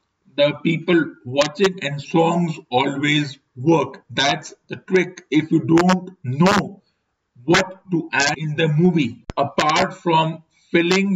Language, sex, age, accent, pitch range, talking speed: English, male, 50-69, Indian, 145-170 Hz, 125 wpm